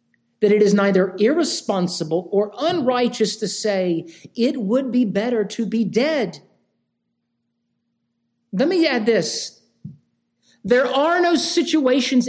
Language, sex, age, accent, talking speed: English, male, 50-69, American, 115 wpm